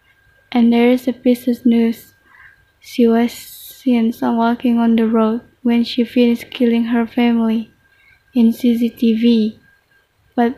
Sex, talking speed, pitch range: female, 135 wpm, 230-245 Hz